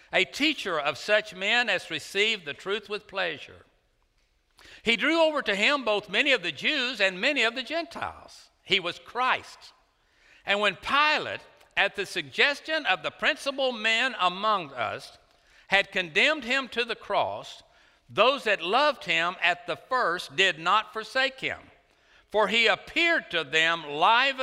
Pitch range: 135-220 Hz